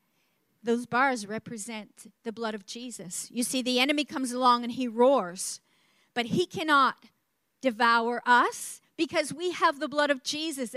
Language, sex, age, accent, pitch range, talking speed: English, female, 40-59, American, 235-310 Hz, 155 wpm